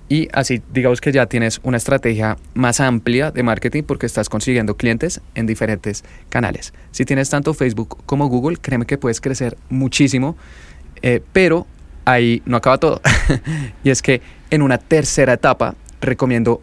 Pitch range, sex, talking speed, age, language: 110-135 Hz, male, 160 wpm, 20-39, Spanish